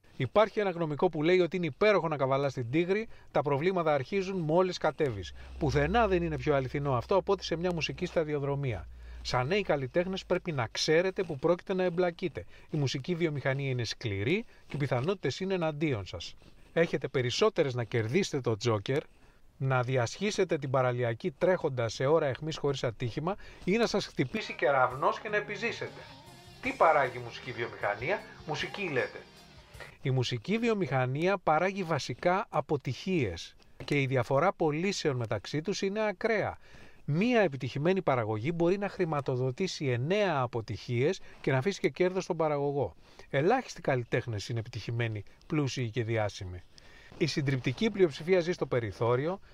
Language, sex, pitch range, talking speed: English, male, 125-185 Hz, 150 wpm